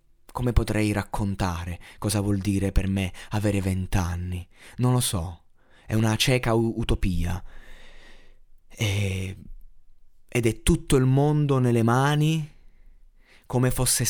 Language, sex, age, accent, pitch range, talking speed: Italian, male, 20-39, native, 90-110 Hz, 110 wpm